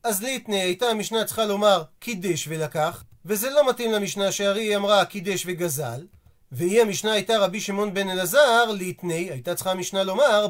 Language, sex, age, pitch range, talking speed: Hebrew, male, 40-59, 185-225 Hz, 165 wpm